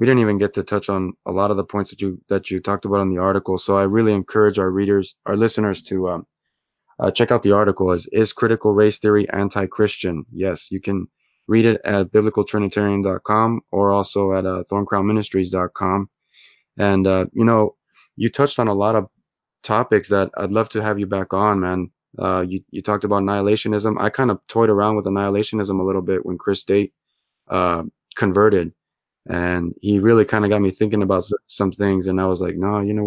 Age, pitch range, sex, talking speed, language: 20-39, 95-105 Hz, male, 215 wpm, English